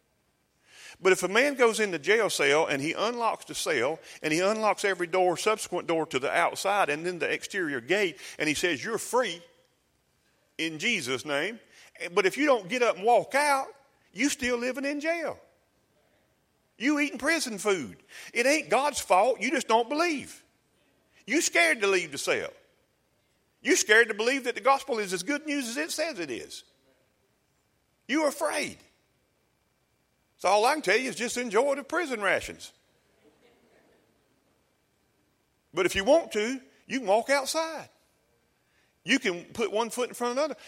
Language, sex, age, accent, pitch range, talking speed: English, male, 40-59, American, 185-290 Hz, 170 wpm